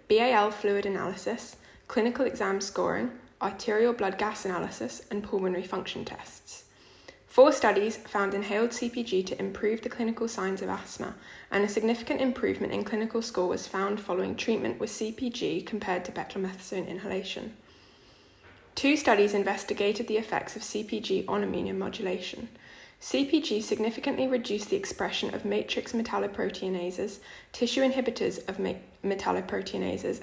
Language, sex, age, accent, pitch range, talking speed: English, female, 10-29, British, 195-240 Hz, 130 wpm